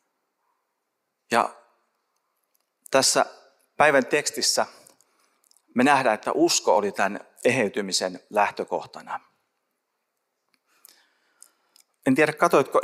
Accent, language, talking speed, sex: native, Finnish, 70 wpm, male